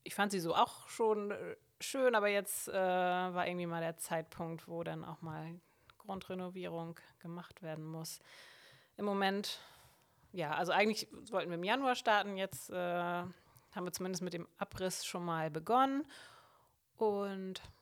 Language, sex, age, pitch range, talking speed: German, female, 30-49, 165-205 Hz, 150 wpm